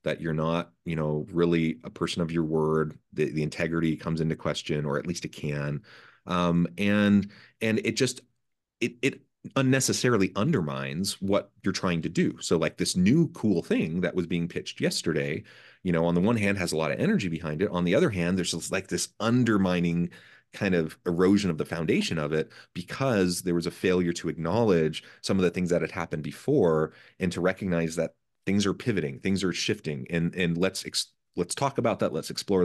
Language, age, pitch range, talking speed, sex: English, 30-49, 80-100 Hz, 205 wpm, male